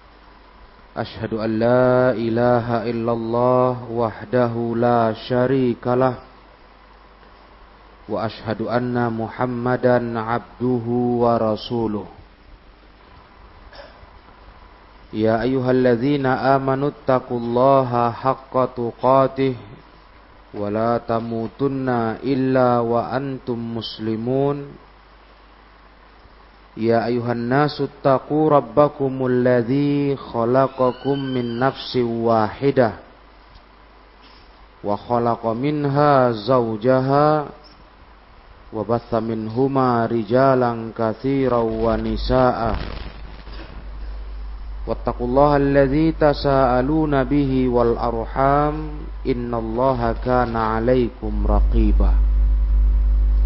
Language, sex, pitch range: Indonesian, male, 110-130 Hz